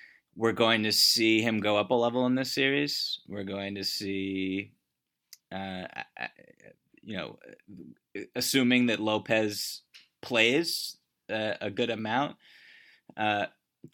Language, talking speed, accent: English, 120 wpm, American